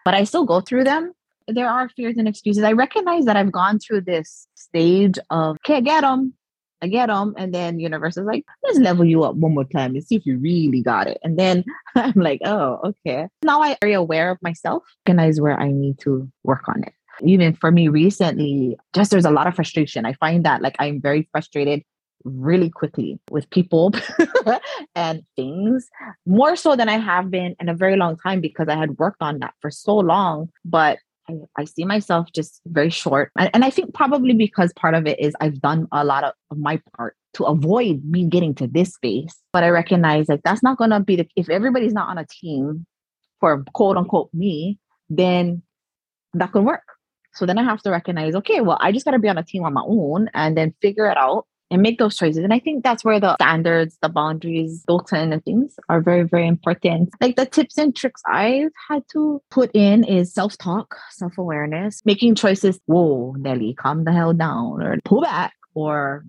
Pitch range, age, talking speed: 155-215 Hz, 20-39, 210 wpm